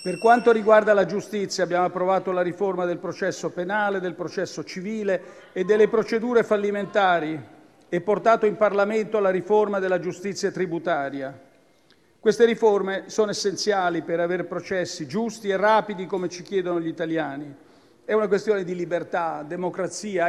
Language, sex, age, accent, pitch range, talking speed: Italian, male, 50-69, native, 175-210 Hz, 145 wpm